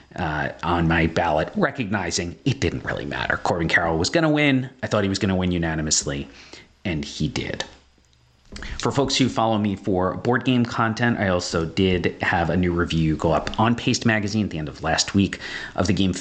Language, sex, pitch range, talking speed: English, male, 85-110 Hz, 205 wpm